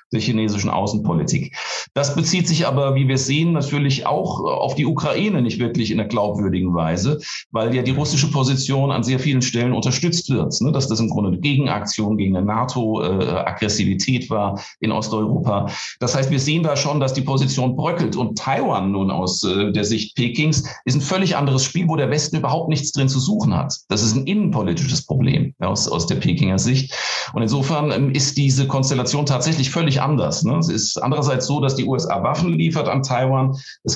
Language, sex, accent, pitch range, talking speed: German, male, German, 120-145 Hz, 195 wpm